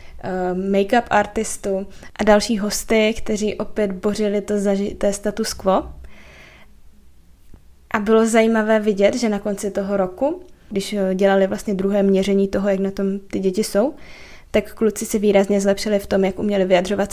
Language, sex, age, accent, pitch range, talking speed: Czech, female, 20-39, native, 195-220 Hz, 145 wpm